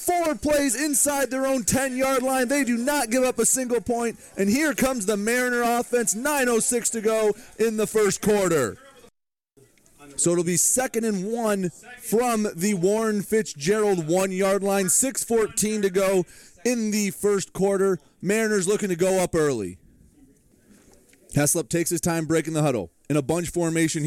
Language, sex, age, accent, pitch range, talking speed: English, male, 30-49, American, 180-290 Hz, 160 wpm